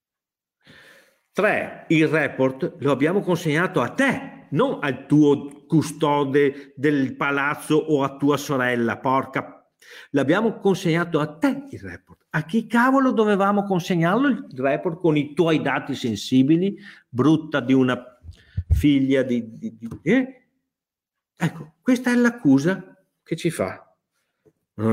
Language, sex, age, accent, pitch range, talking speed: Italian, male, 50-69, native, 135-225 Hz, 130 wpm